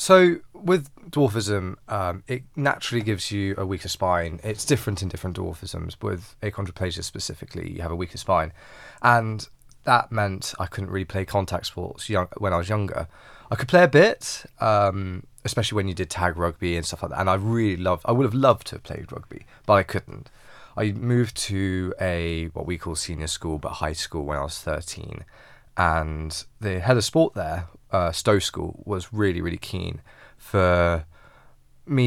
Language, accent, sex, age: English, British, male, 20-39